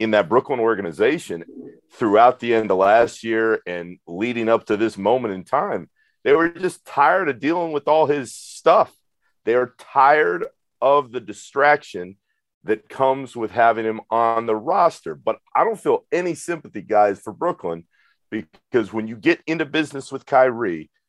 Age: 40-59